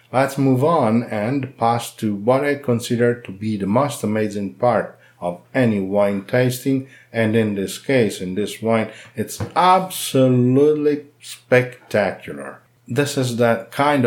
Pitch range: 105-125 Hz